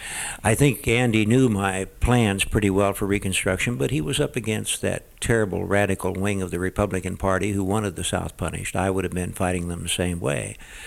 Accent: American